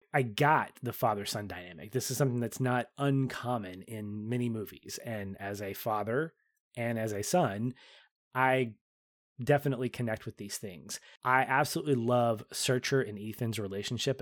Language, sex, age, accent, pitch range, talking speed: English, male, 20-39, American, 110-135 Hz, 150 wpm